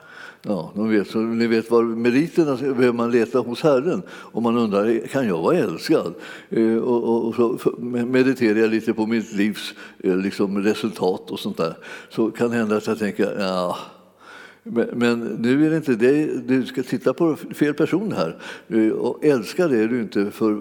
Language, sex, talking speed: Swedish, male, 180 wpm